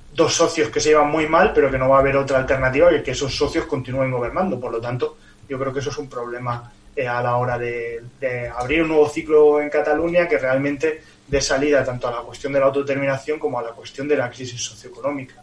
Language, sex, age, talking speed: Spanish, male, 20-39, 240 wpm